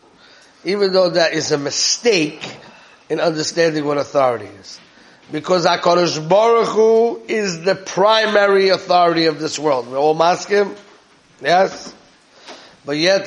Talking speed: 130 wpm